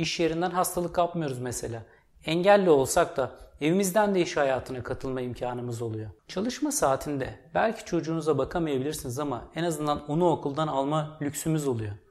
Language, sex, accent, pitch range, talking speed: Turkish, male, native, 130-175 Hz, 140 wpm